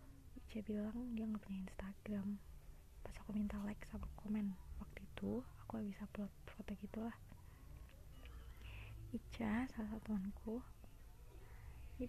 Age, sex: 20-39, female